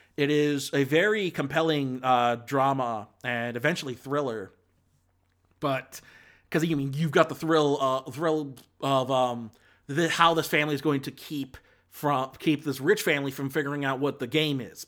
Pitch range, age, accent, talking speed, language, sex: 125-150 Hz, 30-49, American, 175 wpm, English, male